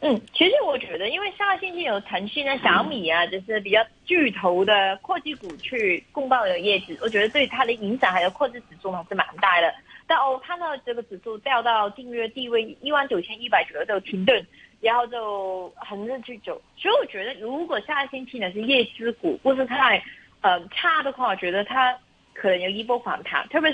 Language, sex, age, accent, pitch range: Chinese, female, 20-39, native, 200-275 Hz